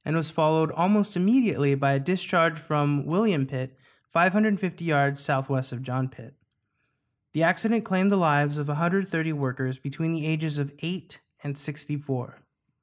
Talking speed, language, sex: 150 wpm, English, male